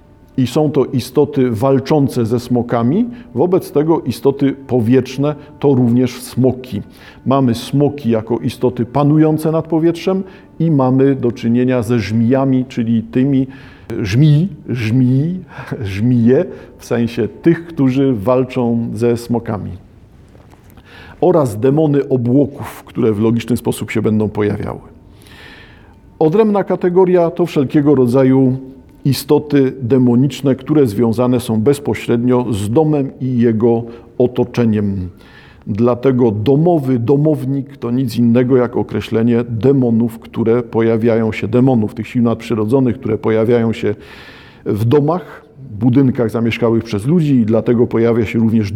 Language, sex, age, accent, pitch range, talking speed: Polish, male, 50-69, native, 115-140 Hz, 120 wpm